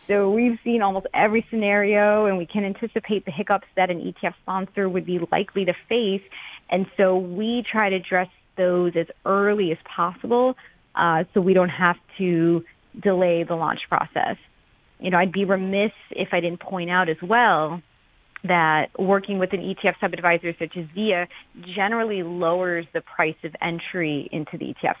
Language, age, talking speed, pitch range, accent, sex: English, 30-49, 175 wpm, 170-200 Hz, American, female